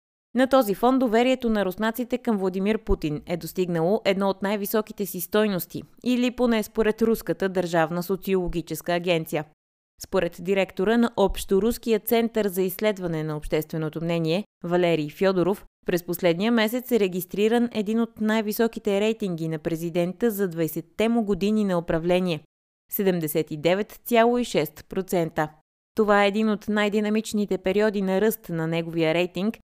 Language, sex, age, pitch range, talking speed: Bulgarian, female, 20-39, 175-220 Hz, 135 wpm